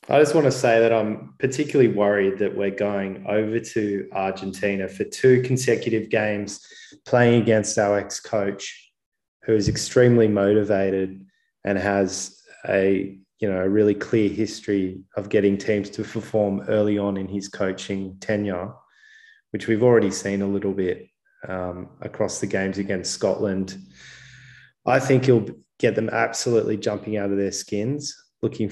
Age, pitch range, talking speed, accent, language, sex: 20-39, 95-110 Hz, 150 wpm, Australian, English, male